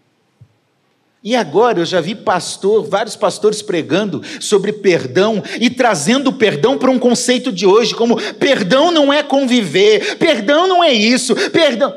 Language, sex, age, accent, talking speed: Portuguese, male, 50-69, Brazilian, 150 wpm